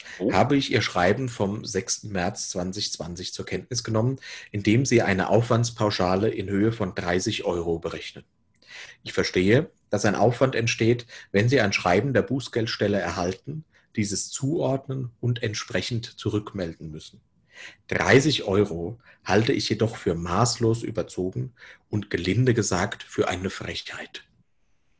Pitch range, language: 95-120 Hz, German